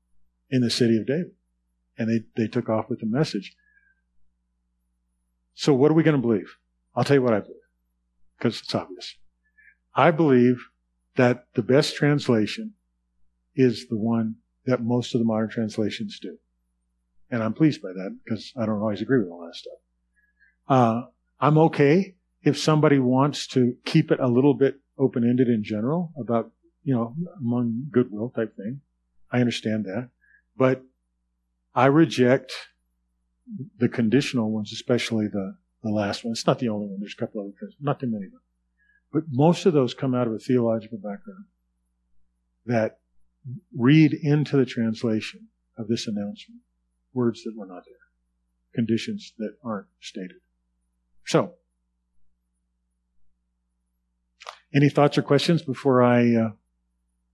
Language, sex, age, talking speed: English, male, 40-59, 155 wpm